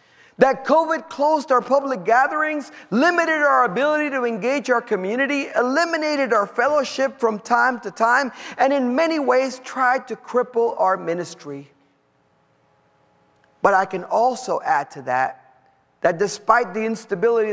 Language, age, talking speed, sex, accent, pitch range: English, 50-69, 135 wpm, male, American, 140-235 Hz